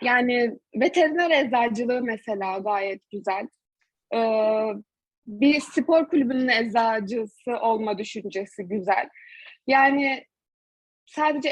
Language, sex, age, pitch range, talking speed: Turkish, female, 20-39, 220-275 Hz, 80 wpm